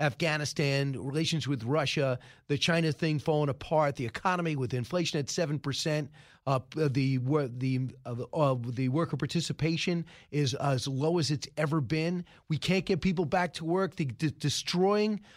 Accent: American